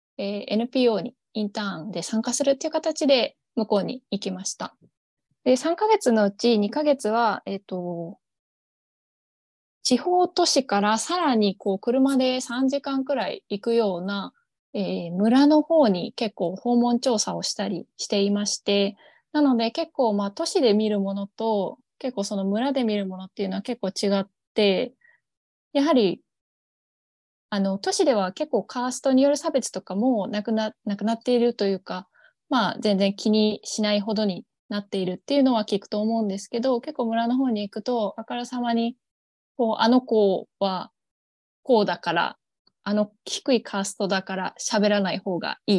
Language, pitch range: Japanese, 200-255 Hz